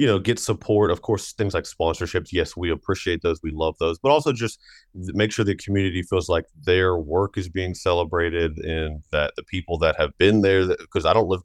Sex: male